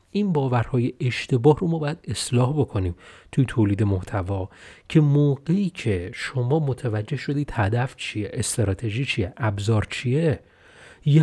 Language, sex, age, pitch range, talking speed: Persian, male, 30-49, 110-155 Hz, 130 wpm